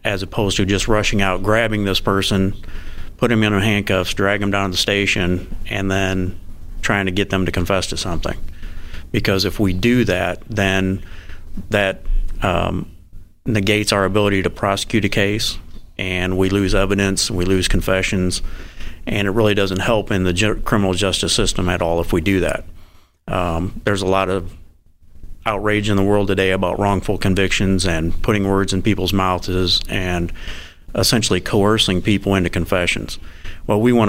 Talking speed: 165 wpm